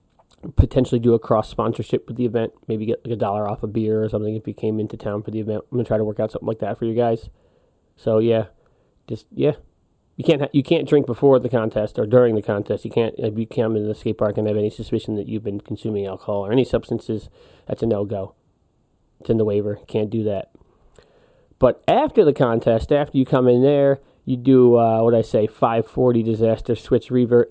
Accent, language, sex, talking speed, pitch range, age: American, English, male, 230 wpm, 110-145 Hz, 30-49